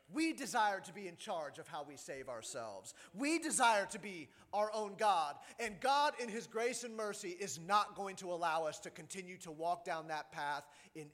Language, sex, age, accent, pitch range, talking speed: English, male, 30-49, American, 175-245 Hz, 210 wpm